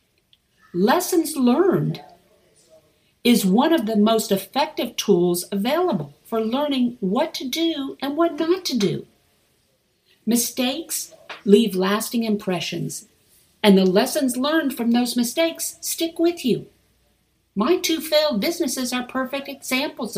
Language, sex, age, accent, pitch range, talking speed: English, female, 50-69, American, 190-270 Hz, 120 wpm